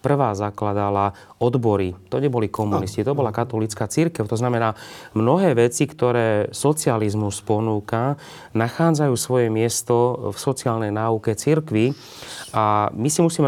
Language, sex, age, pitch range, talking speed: Slovak, male, 30-49, 110-135 Hz, 125 wpm